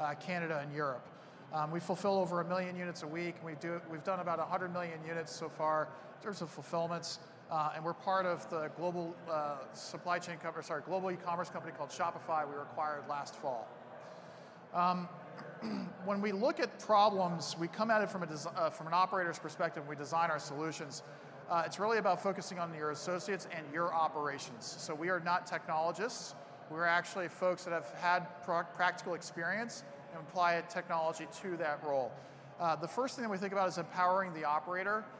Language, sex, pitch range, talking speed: English, male, 160-185 Hz, 195 wpm